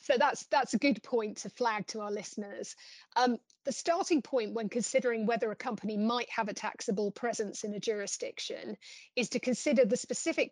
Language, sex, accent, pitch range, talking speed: English, female, British, 215-265 Hz, 190 wpm